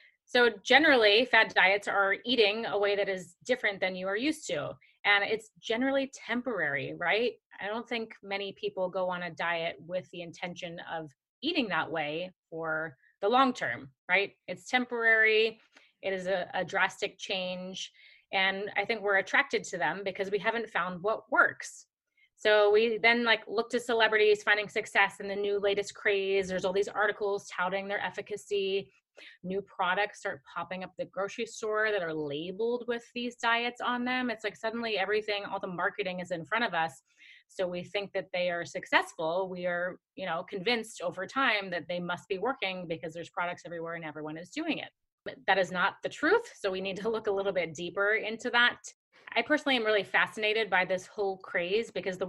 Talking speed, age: 190 wpm, 30-49